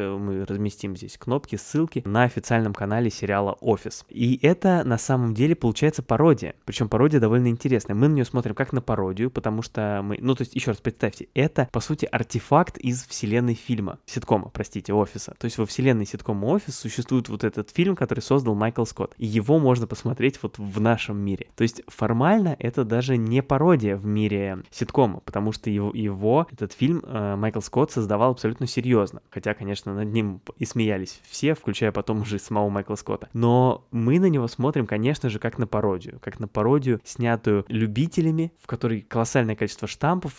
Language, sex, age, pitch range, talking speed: Russian, male, 20-39, 105-125 Hz, 185 wpm